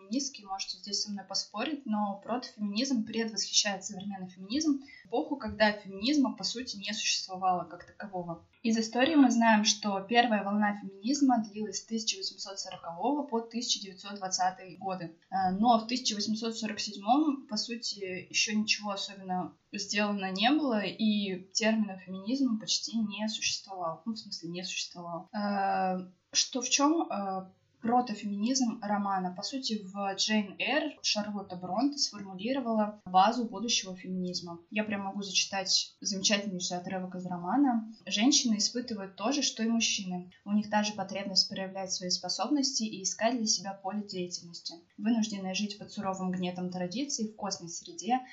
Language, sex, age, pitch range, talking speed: Russian, female, 20-39, 185-230 Hz, 135 wpm